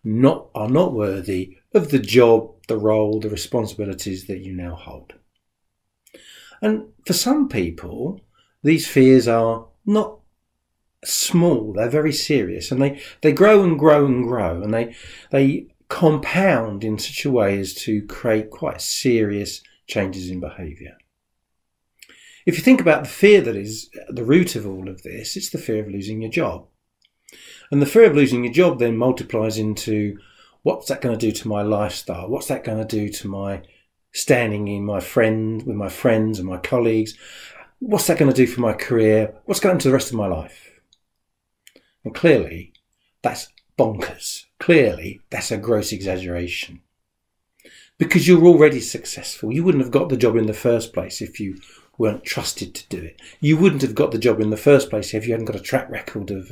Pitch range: 100-140 Hz